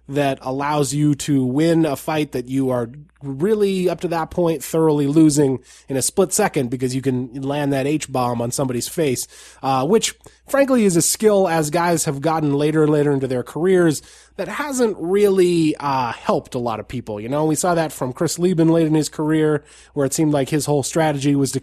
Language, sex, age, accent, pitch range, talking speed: English, male, 20-39, American, 135-165 Hz, 210 wpm